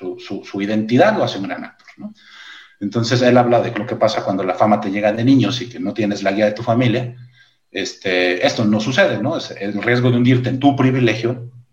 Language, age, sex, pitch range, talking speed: Spanish, 40-59, male, 105-125 Hz, 225 wpm